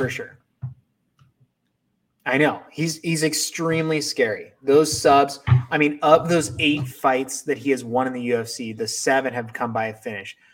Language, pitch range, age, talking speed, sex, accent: English, 125-155 Hz, 20-39, 170 wpm, male, American